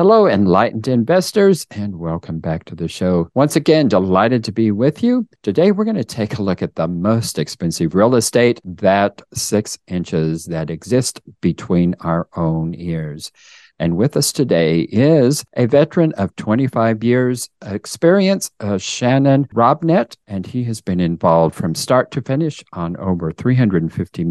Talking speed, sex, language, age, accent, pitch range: 160 wpm, male, English, 50-69, American, 85-125 Hz